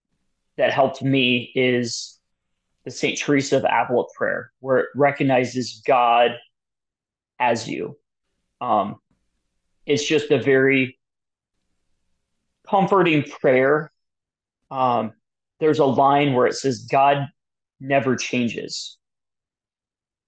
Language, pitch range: English, 115-145 Hz